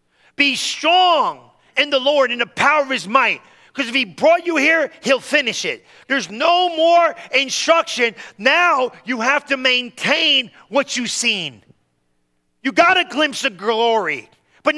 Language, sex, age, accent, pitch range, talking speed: English, male, 40-59, American, 195-270 Hz, 160 wpm